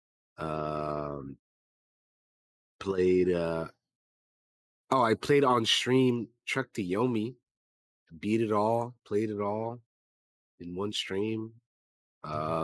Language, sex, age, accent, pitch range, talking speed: English, male, 30-49, American, 95-125 Hz, 105 wpm